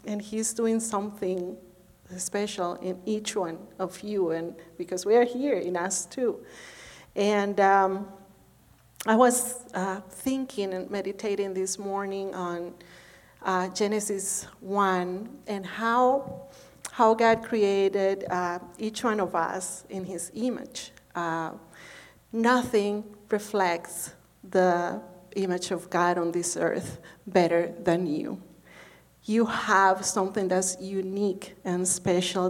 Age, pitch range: 40-59, 185-220 Hz